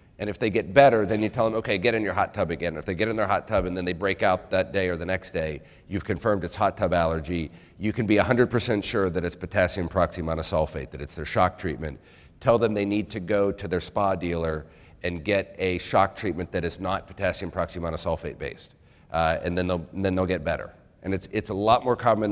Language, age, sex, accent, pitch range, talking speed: English, 40-59, male, American, 85-110 Hz, 250 wpm